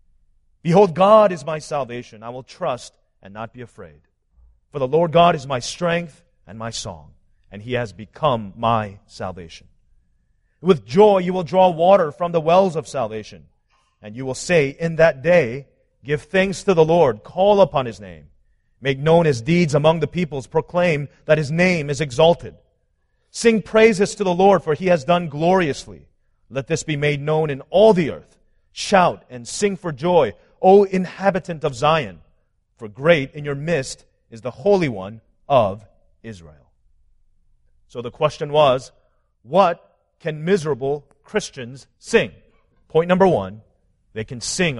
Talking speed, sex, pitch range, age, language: 165 wpm, male, 115-175 Hz, 40-59, English